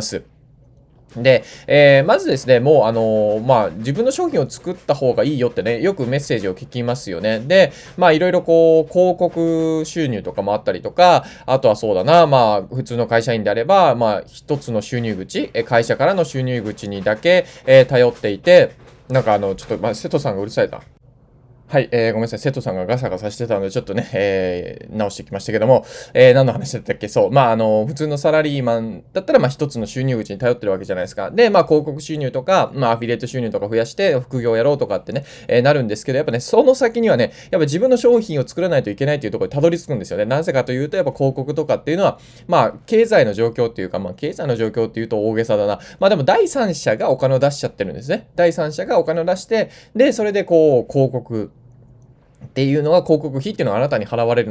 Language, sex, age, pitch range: Japanese, male, 20-39, 115-170 Hz